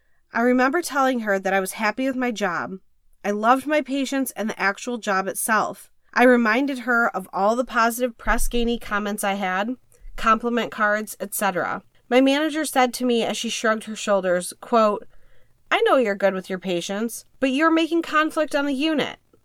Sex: female